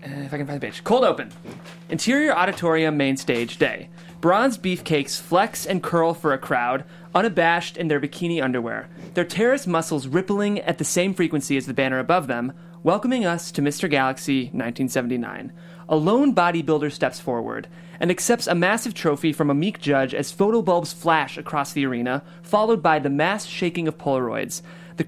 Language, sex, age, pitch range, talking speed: English, male, 30-49, 145-180 Hz, 175 wpm